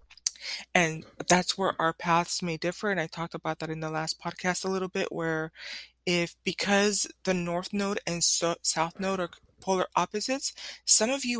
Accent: American